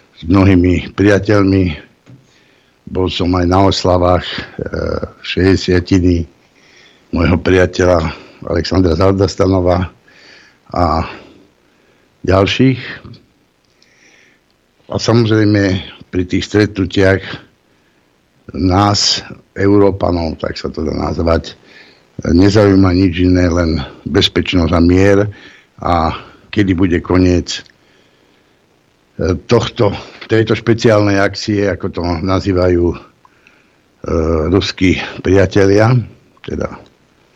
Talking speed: 75 wpm